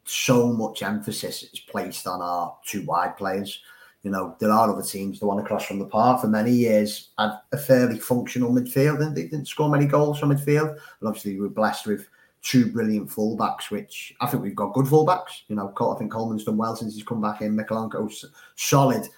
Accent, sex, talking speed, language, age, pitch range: British, male, 210 wpm, English, 30-49, 105-135 Hz